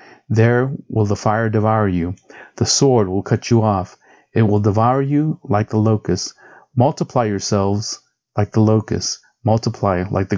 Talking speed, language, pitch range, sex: 155 wpm, English, 100-130 Hz, male